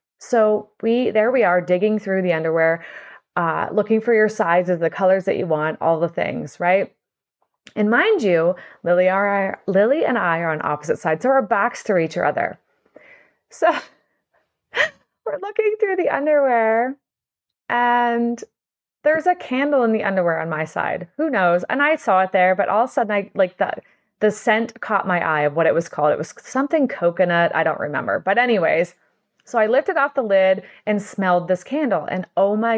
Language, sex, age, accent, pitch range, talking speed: English, female, 20-39, American, 190-300 Hz, 190 wpm